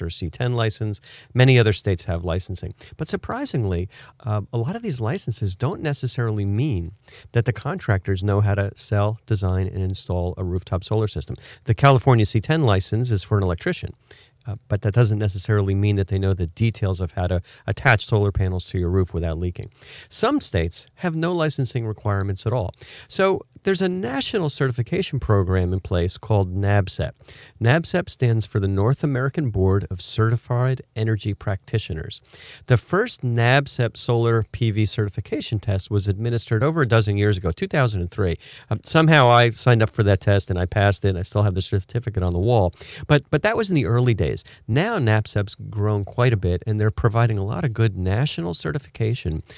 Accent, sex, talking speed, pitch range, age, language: American, male, 185 wpm, 100-125 Hz, 40-59, English